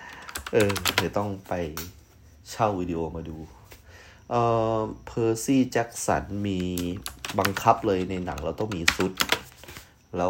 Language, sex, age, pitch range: Thai, male, 30-49, 85-100 Hz